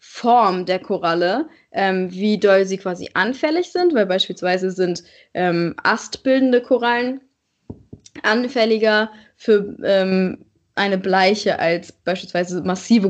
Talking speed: 110 wpm